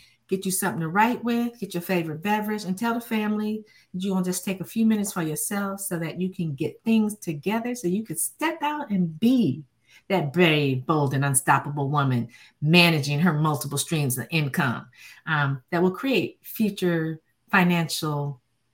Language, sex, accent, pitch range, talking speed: English, female, American, 150-195 Hz, 180 wpm